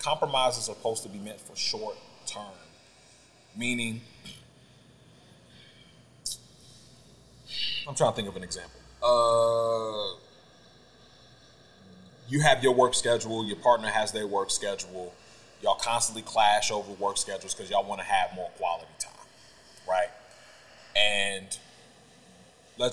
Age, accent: 30-49, American